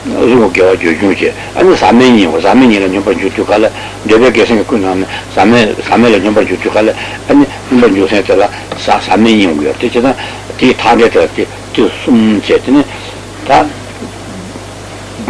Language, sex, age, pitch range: Italian, male, 60-79, 100-120 Hz